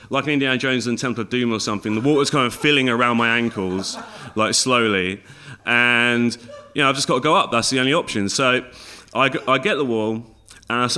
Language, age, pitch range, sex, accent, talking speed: English, 30-49, 100-125 Hz, male, British, 220 wpm